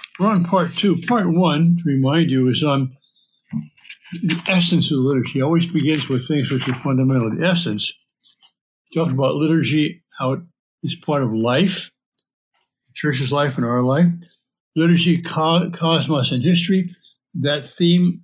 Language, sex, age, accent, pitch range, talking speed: English, male, 60-79, American, 130-170 Hz, 155 wpm